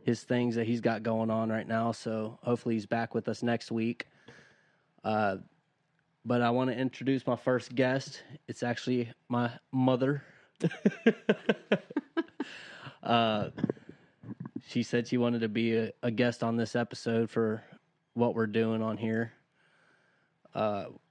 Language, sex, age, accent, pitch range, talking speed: English, male, 20-39, American, 110-125 Hz, 140 wpm